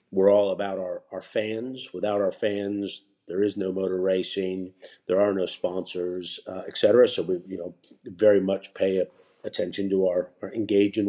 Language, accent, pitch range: English, American, 95-110 Hz